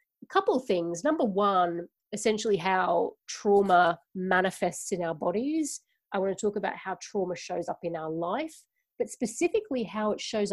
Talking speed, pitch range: 160 wpm, 185-230 Hz